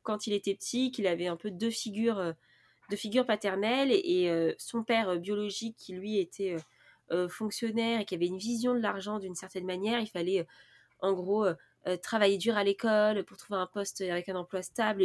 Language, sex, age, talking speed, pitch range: French, female, 20-39, 185 wpm, 190-230 Hz